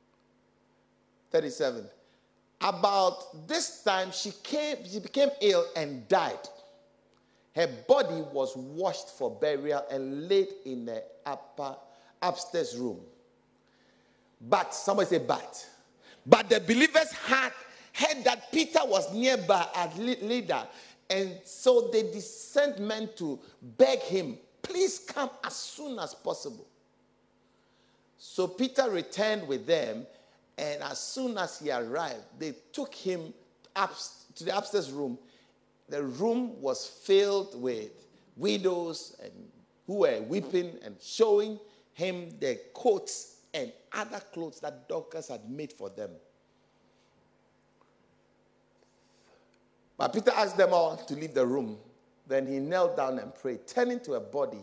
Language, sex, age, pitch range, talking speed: English, male, 50-69, 165-275 Hz, 125 wpm